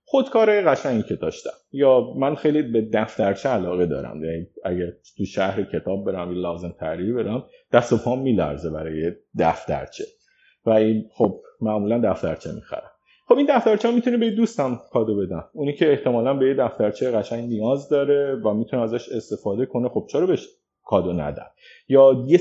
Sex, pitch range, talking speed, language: male, 115-180 Hz, 175 wpm, Persian